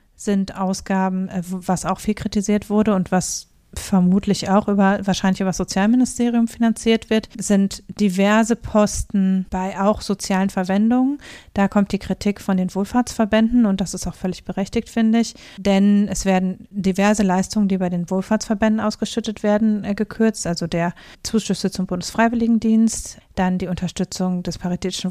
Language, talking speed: German, 150 wpm